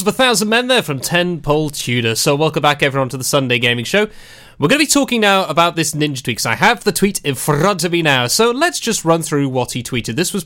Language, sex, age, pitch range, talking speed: English, male, 30-49, 135-195 Hz, 270 wpm